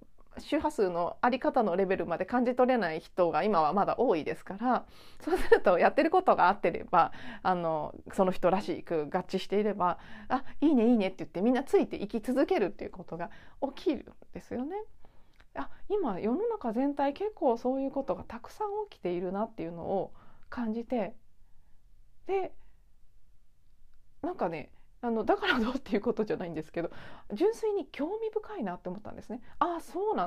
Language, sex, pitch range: Japanese, female, 190-280 Hz